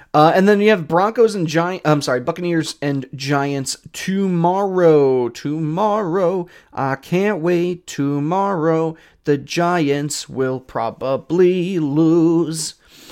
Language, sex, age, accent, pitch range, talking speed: English, male, 30-49, American, 150-210 Hz, 110 wpm